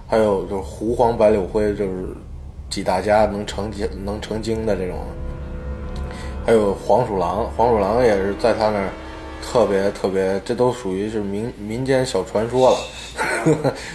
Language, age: Chinese, 20-39